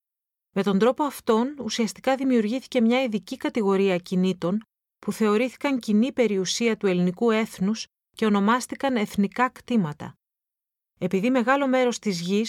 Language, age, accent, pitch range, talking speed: Greek, 30-49, native, 195-245 Hz, 125 wpm